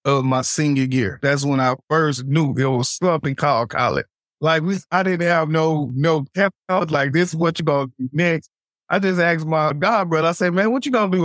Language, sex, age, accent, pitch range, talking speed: English, male, 20-39, American, 140-180 Hz, 230 wpm